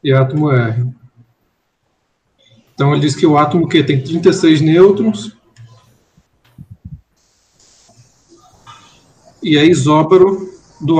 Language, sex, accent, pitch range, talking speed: Portuguese, male, Brazilian, 130-160 Hz, 95 wpm